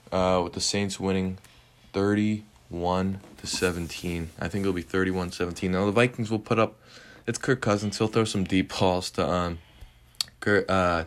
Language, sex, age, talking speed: English, male, 20-39, 170 wpm